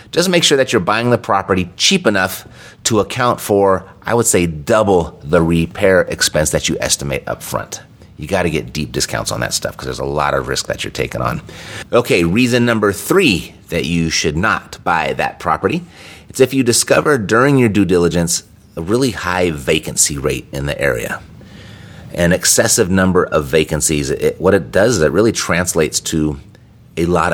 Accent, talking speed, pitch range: American, 190 wpm, 85-110 Hz